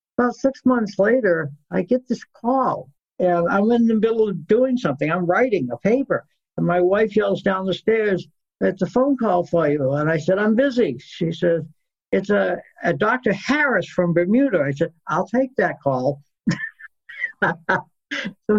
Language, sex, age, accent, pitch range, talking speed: English, male, 60-79, American, 175-230 Hz, 175 wpm